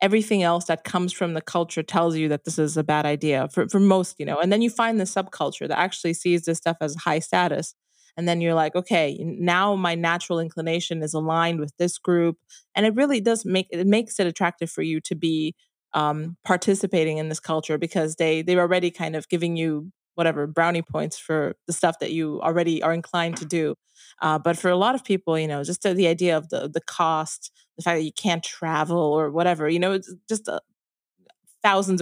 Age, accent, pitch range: 20-39, American, 165-195 Hz